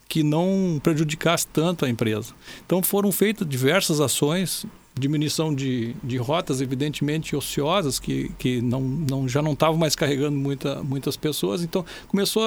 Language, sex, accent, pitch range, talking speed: Portuguese, male, Brazilian, 145-190 Hz, 135 wpm